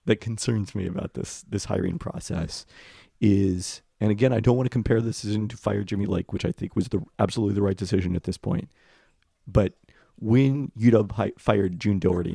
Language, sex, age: English, male, 40-59